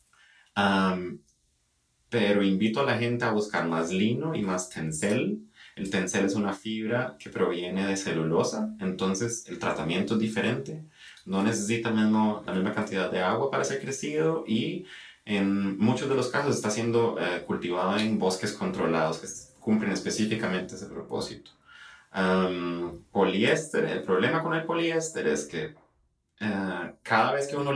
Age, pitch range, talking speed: 30-49, 85-115 Hz, 150 wpm